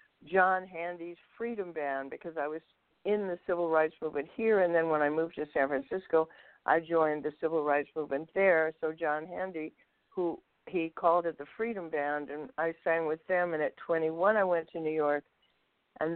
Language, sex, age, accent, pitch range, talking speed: English, female, 60-79, American, 155-180 Hz, 195 wpm